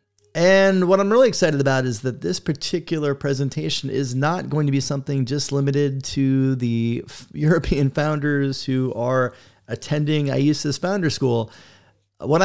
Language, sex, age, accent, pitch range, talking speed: English, male, 30-49, American, 125-155 Hz, 150 wpm